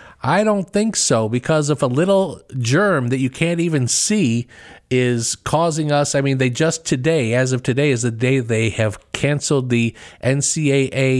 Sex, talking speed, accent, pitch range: male, 175 wpm, American, 115-150 Hz